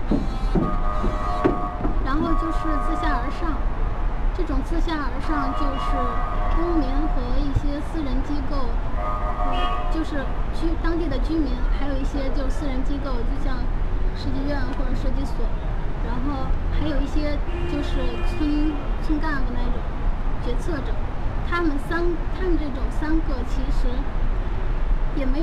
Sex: female